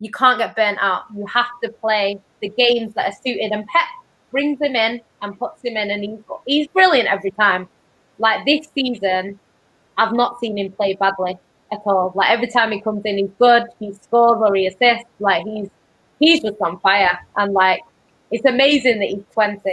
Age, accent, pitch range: 20-39, British, 200-240 Hz